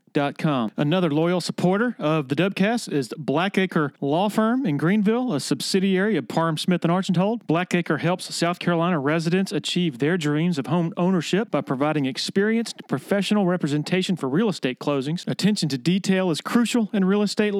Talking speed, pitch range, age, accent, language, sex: 165 wpm, 155-190 Hz, 40-59, American, English, male